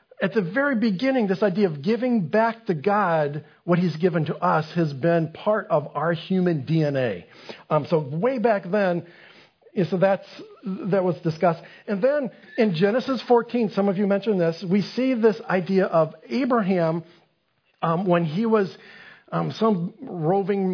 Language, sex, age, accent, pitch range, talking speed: English, male, 50-69, American, 165-215 Hz, 160 wpm